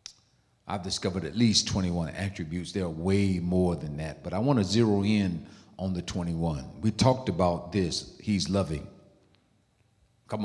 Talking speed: 160 wpm